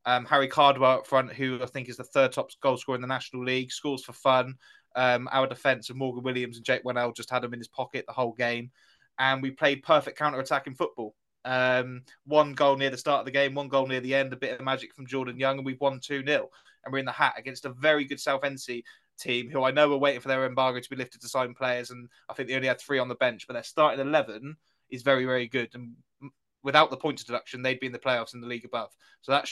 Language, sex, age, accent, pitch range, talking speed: English, male, 20-39, British, 125-135 Hz, 265 wpm